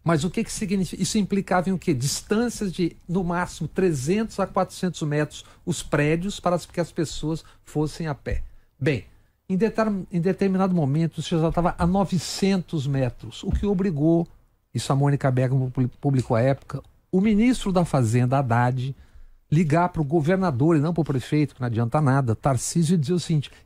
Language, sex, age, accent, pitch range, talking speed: Portuguese, male, 60-79, Brazilian, 140-180 Hz, 180 wpm